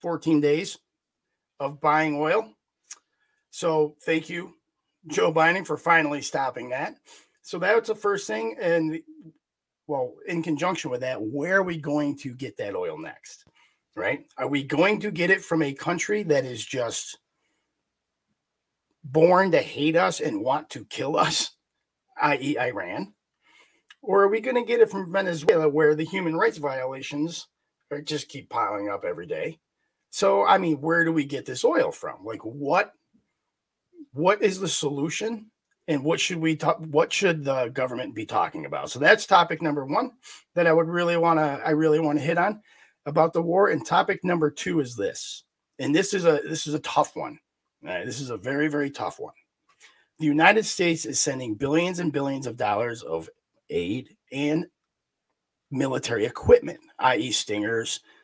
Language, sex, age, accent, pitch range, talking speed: English, male, 40-59, American, 145-190 Hz, 170 wpm